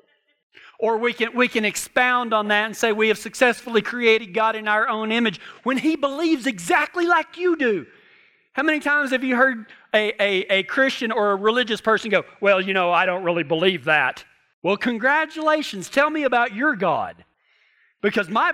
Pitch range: 210-265 Hz